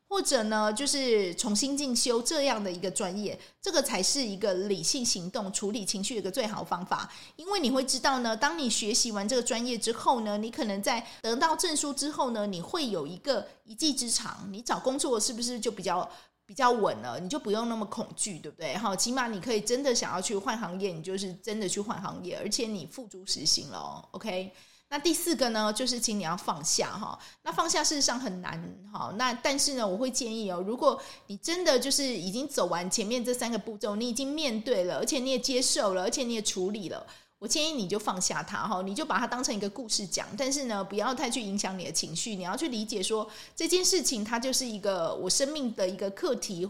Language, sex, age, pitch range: Chinese, female, 20-39, 200-265 Hz